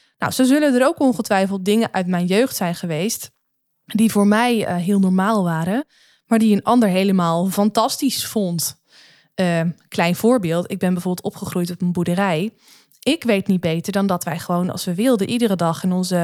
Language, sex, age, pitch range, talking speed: Dutch, female, 20-39, 180-225 Hz, 190 wpm